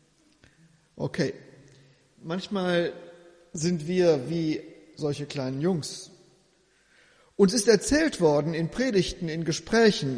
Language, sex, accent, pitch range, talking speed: German, male, German, 160-225 Hz, 95 wpm